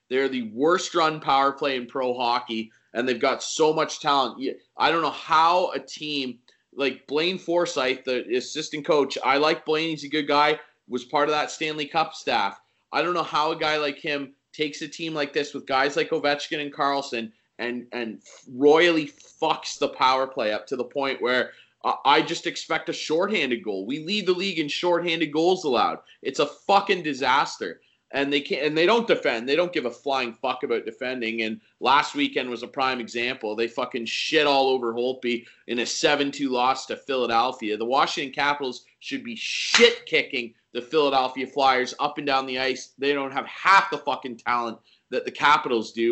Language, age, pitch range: English, 30-49, 130-160 Hz